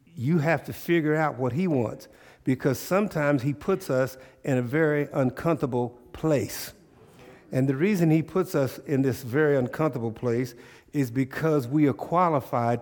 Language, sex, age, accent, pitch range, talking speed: English, male, 50-69, American, 130-155 Hz, 160 wpm